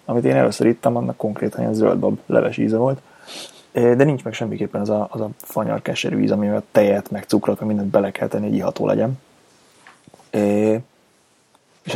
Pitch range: 105-115 Hz